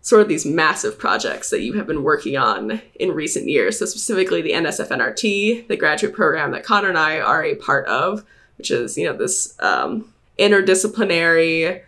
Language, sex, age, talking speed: English, female, 20-39, 185 wpm